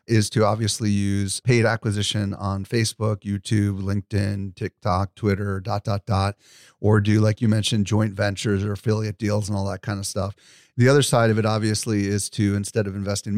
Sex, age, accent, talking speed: male, 40-59, American, 190 wpm